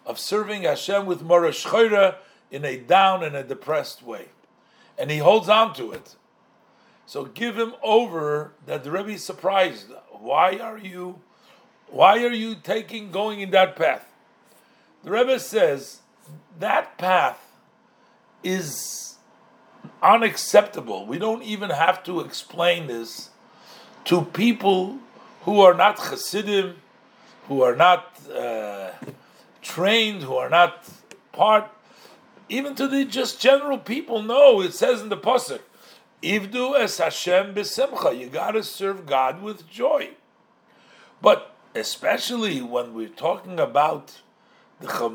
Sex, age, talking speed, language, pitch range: male, 50-69, 125 wpm, English, 165-220 Hz